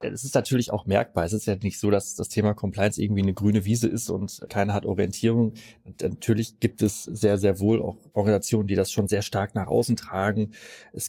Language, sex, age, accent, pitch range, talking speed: German, male, 30-49, German, 100-115 Hz, 215 wpm